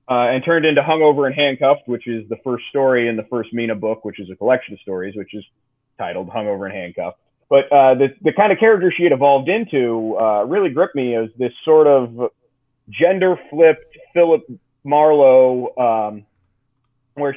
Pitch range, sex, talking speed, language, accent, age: 115-140 Hz, male, 185 wpm, English, American, 30-49